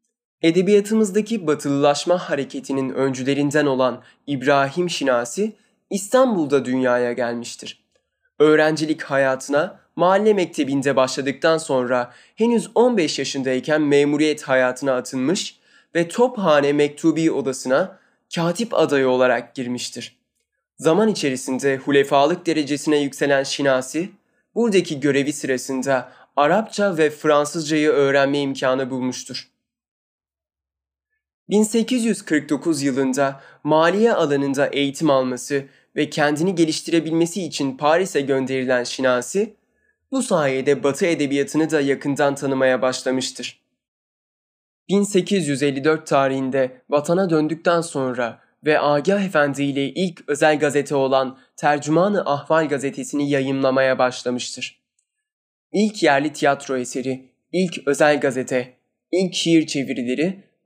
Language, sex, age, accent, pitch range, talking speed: Turkish, male, 20-39, native, 135-170 Hz, 95 wpm